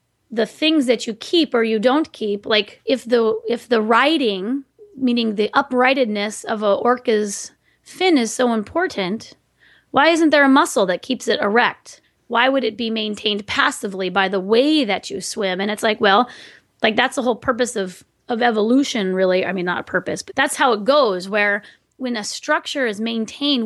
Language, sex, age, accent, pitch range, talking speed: English, female, 30-49, American, 205-260 Hz, 190 wpm